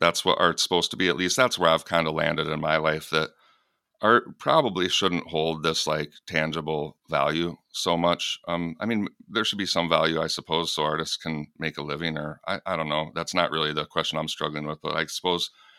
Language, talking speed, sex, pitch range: English, 230 wpm, male, 75-85 Hz